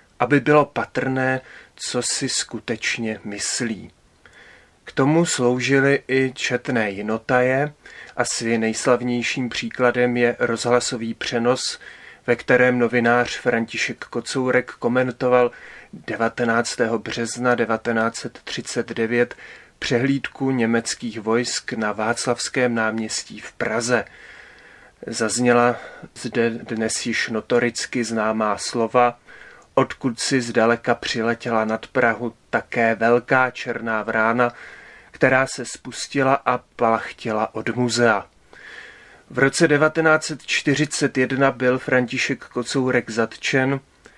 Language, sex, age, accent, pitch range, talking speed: Czech, male, 30-49, native, 115-125 Hz, 90 wpm